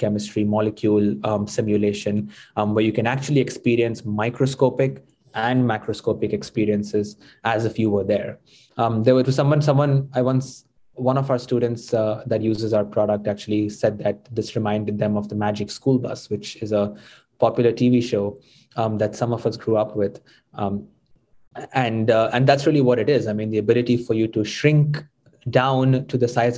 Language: English